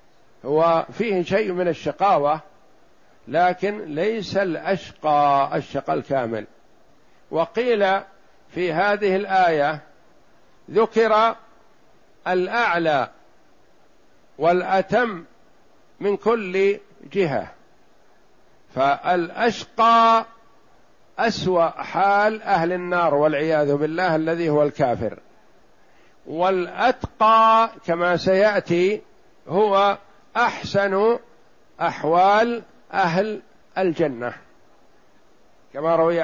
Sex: male